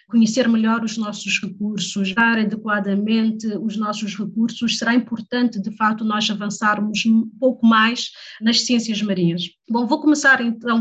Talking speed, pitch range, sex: 145 wpm, 210-235 Hz, female